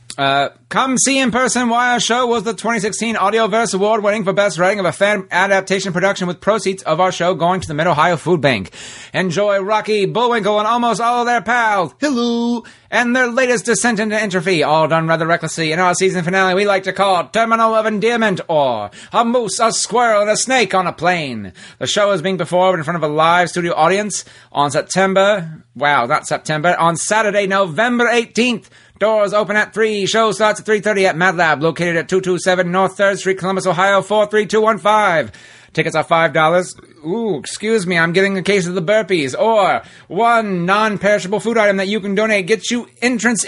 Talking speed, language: 195 wpm, English